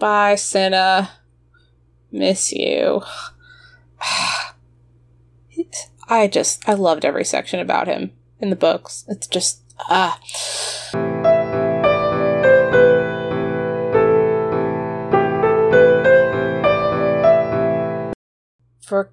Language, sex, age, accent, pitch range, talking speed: English, female, 30-49, American, 145-205 Hz, 60 wpm